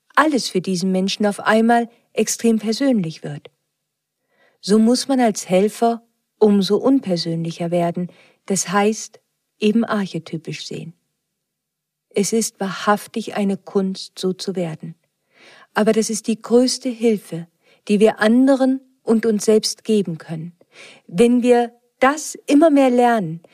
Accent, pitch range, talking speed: German, 190-245 Hz, 125 wpm